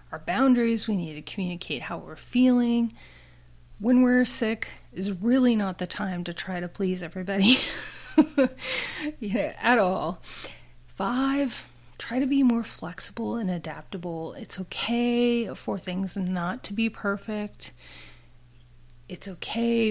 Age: 30-49